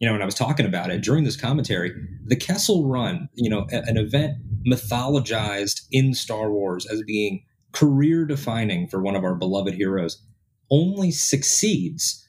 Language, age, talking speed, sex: English, 30-49, 165 wpm, male